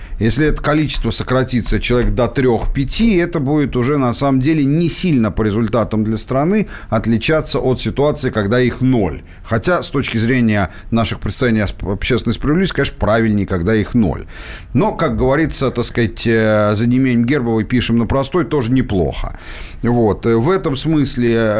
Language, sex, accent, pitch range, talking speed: Russian, male, native, 110-150 Hz, 150 wpm